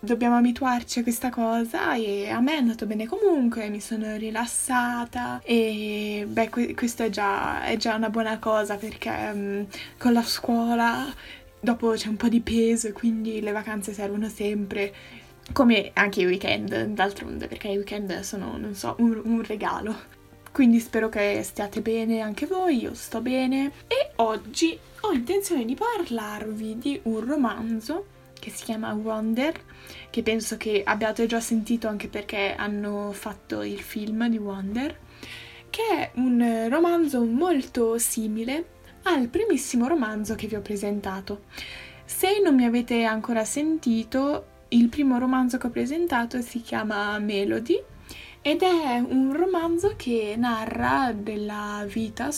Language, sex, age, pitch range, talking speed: English, female, 10-29, 210-250 Hz, 145 wpm